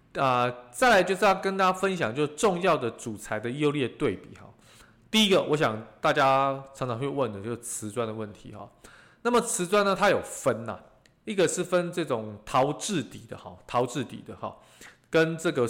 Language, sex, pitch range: Chinese, male, 115-180 Hz